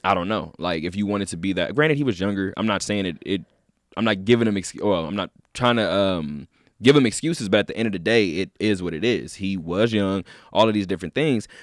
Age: 20-39